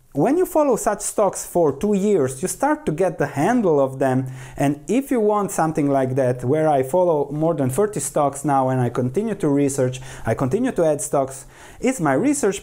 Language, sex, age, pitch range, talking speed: English, male, 30-49, 135-190 Hz, 210 wpm